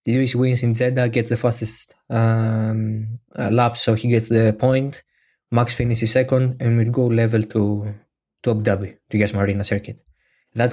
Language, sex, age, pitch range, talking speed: Greek, male, 20-39, 110-125 Hz, 160 wpm